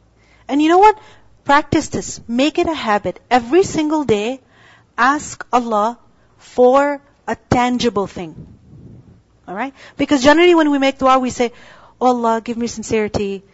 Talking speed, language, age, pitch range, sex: 145 wpm, English, 40-59, 215-280 Hz, female